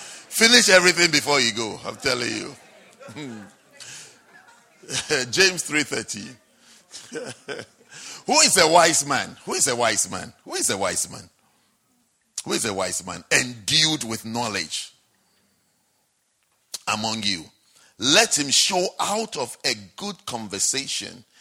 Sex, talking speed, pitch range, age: male, 120 wpm, 125-200 Hz, 50-69